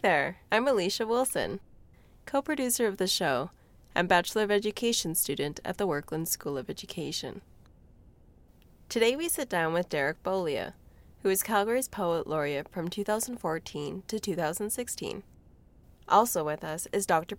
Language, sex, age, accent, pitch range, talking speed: English, female, 20-39, American, 155-215 Hz, 140 wpm